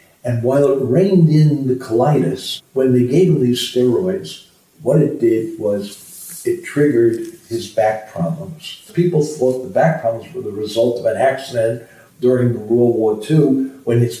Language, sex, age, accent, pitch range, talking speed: English, male, 50-69, American, 115-150 Hz, 170 wpm